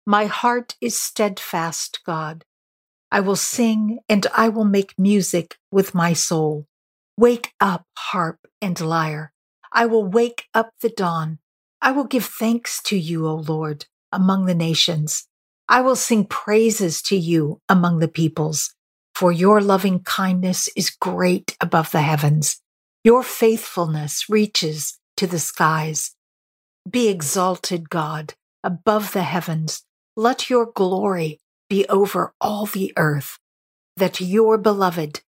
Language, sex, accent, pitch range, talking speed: English, female, American, 160-205 Hz, 135 wpm